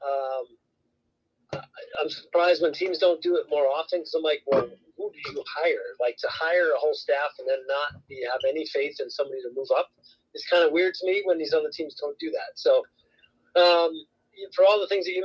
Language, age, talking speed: English, 40-59, 220 wpm